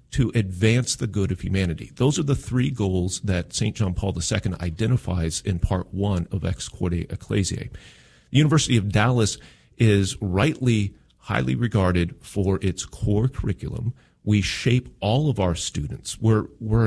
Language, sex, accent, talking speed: English, male, American, 155 wpm